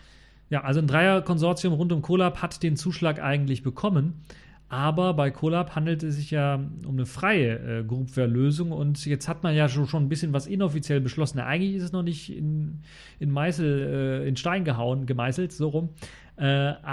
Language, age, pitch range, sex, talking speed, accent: German, 40-59, 130-155 Hz, male, 185 wpm, German